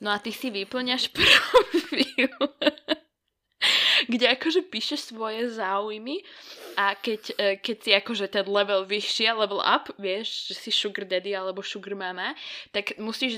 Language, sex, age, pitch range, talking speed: Slovak, female, 10-29, 180-205 Hz, 140 wpm